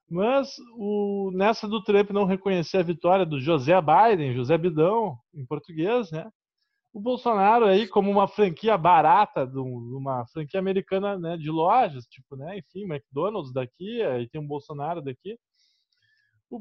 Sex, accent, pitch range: male, Brazilian, 150-215 Hz